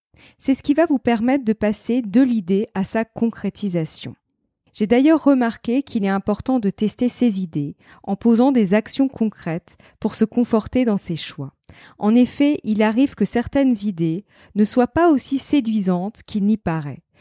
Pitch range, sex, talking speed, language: 195-255 Hz, female, 170 wpm, French